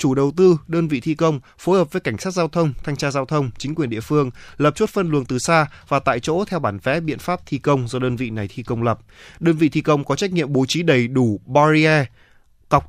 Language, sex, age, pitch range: Vietnamese, male, 20-39, 120-155 Hz